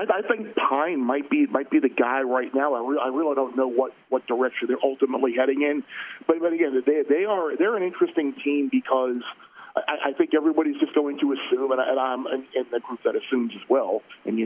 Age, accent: 40-59, American